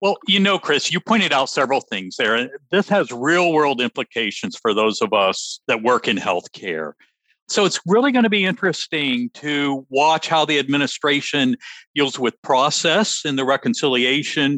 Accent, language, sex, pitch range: American, English, male, 130-200 Hz